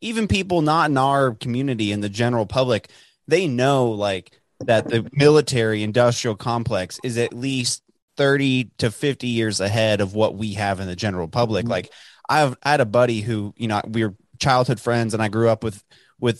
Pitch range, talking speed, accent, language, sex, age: 110-140 Hz, 195 wpm, American, English, male, 20-39